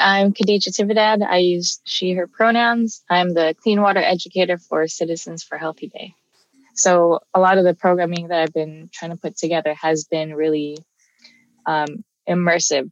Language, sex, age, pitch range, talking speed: English, female, 20-39, 160-190 Hz, 165 wpm